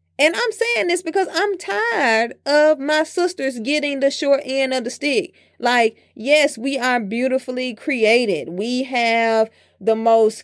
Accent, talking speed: American, 155 wpm